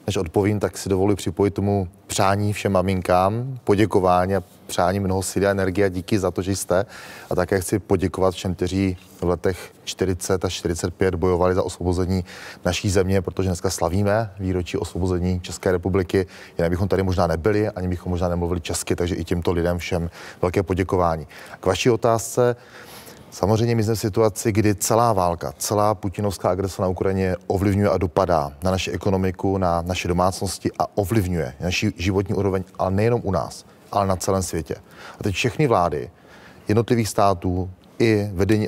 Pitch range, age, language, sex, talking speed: 90-105 Hz, 30-49, Czech, male, 170 wpm